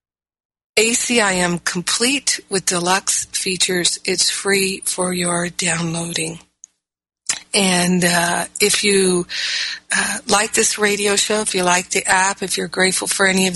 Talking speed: 135 wpm